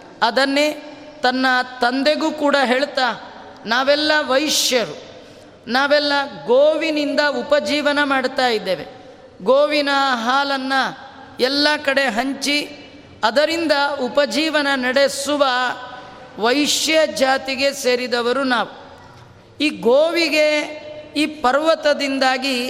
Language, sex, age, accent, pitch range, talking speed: Kannada, female, 30-49, native, 255-290 Hz, 75 wpm